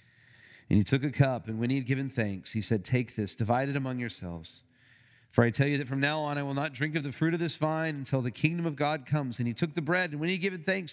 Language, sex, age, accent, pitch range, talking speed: English, male, 40-59, American, 125-175 Hz, 295 wpm